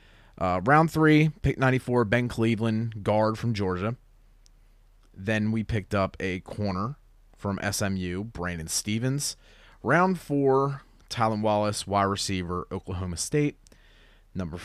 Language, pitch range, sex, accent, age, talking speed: English, 90-120 Hz, male, American, 30-49, 120 wpm